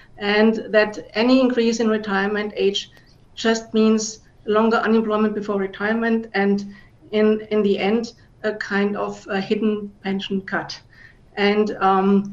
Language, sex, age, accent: English, female, 50-69, German